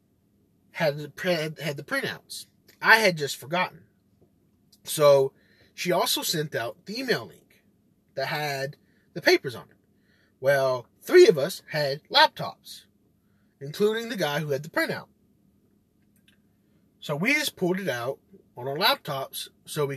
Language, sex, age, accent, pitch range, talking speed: English, male, 30-49, American, 140-200 Hz, 135 wpm